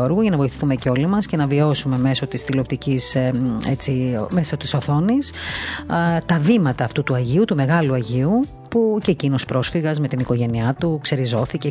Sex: female